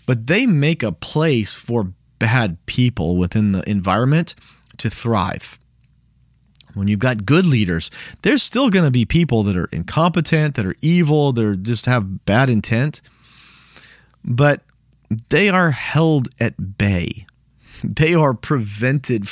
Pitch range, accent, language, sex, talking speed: 110-140 Hz, American, English, male, 135 wpm